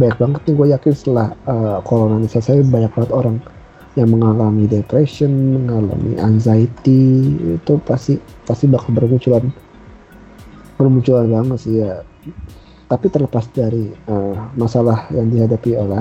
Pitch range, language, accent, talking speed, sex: 115-130 Hz, Indonesian, native, 125 wpm, male